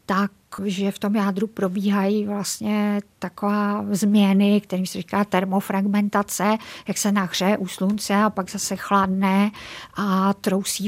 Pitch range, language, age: 190-205 Hz, Czech, 50-69